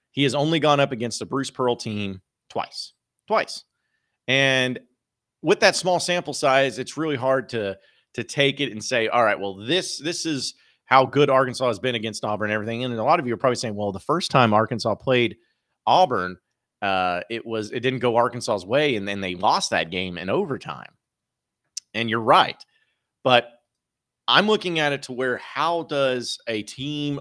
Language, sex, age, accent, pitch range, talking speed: English, male, 30-49, American, 110-140 Hz, 190 wpm